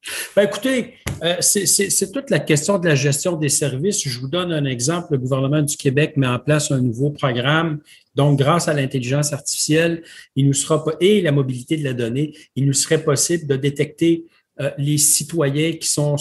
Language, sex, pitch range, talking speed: French, male, 140-165 Hz, 205 wpm